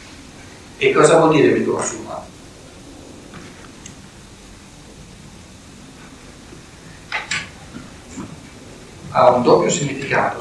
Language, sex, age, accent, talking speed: Italian, male, 60-79, native, 60 wpm